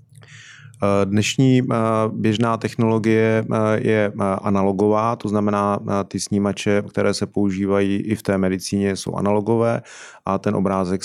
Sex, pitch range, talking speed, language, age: male, 100-110 Hz, 115 wpm, Czech, 30-49